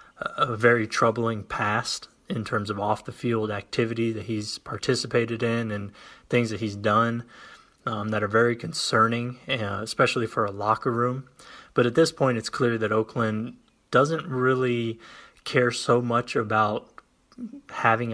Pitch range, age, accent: 110-125 Hz, 20-39, American